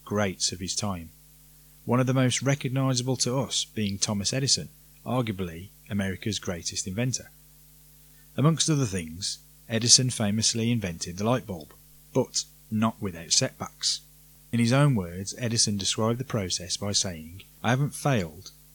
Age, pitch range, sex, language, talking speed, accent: 30-49, 95-135 Hz, male, English, 140 wpm, British